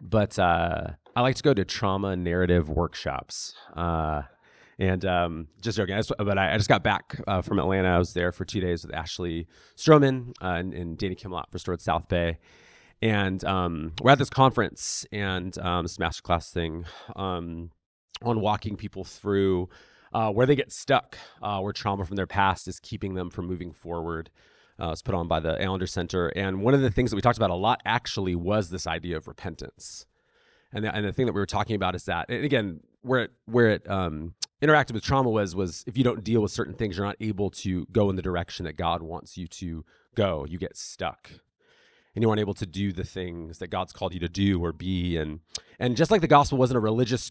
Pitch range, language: 90-115 Hz, English